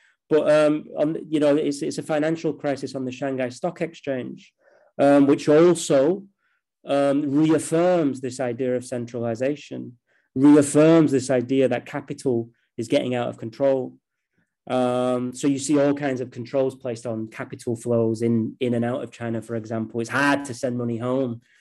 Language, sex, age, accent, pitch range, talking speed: English, male, 20-39, British, 120-145 Hz, 165 wpm